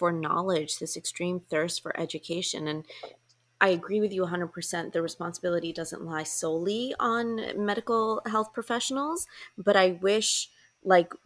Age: 20-39